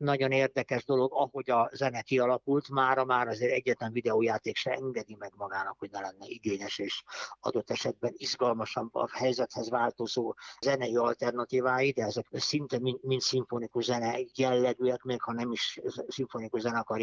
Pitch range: 120-135 Hz